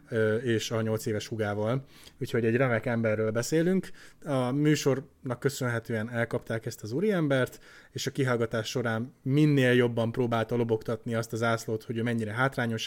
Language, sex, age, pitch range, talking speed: Hungarian, male, 20-39, 110-130 Hz, 150 wpm